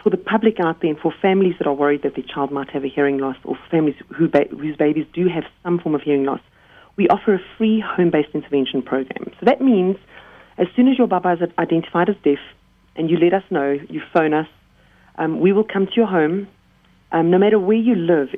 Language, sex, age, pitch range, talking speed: English, female, 40-59, 150-205 Hz, 230 wpm